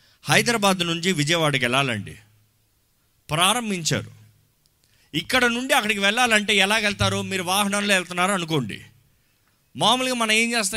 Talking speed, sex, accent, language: 100 wpm, male, native, Telugu